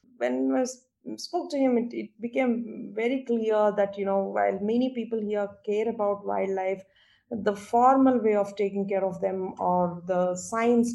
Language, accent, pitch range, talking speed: English, Indian, 190-235 Hz, 170 wpm